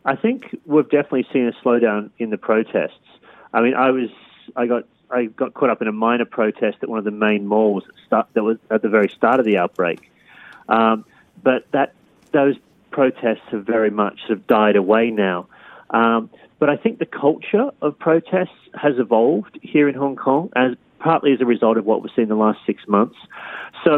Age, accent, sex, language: 40-59, Australian, male, Korean